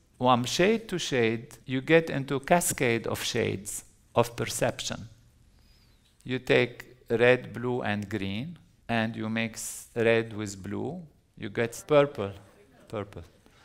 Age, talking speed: 50-69, 125 wpm